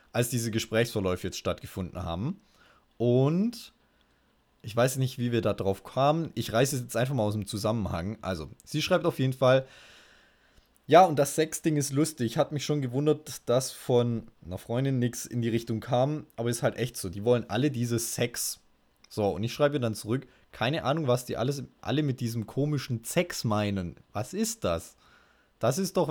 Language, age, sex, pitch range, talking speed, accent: German, 20-39, male, 105-145 Hz, 190 wpm, German